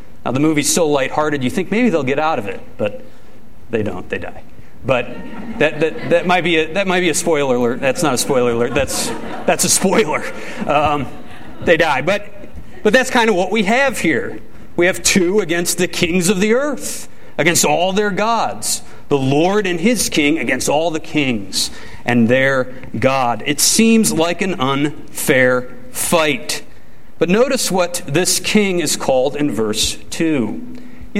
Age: 40-59